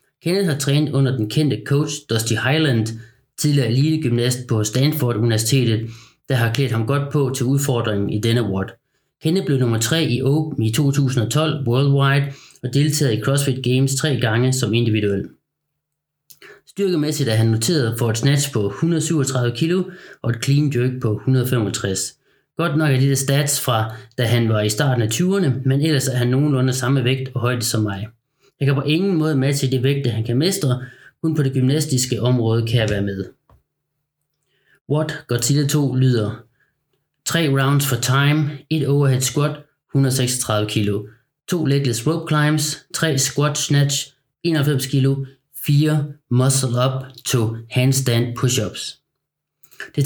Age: 30-49